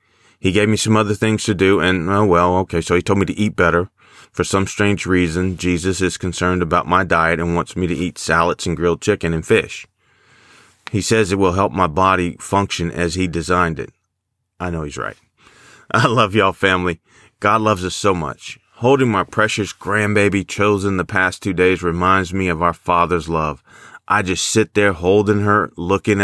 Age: 30-49